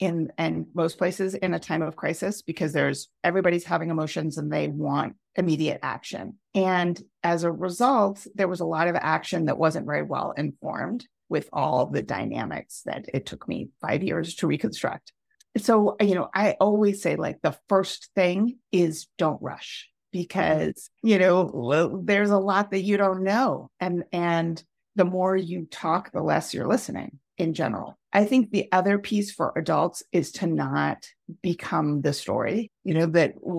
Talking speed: 175 wpm